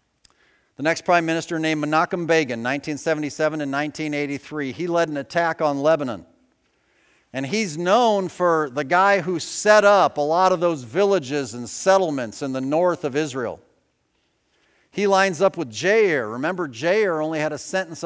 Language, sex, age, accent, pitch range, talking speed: English, male, 50-69, American, 140-175 Hz, 160 wpm